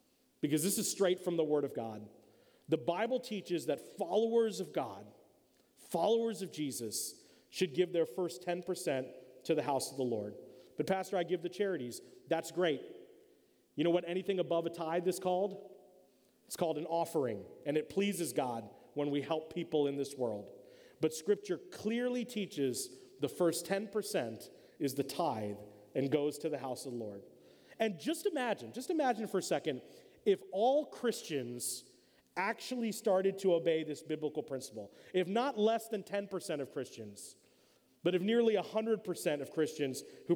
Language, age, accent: English, 40-59, American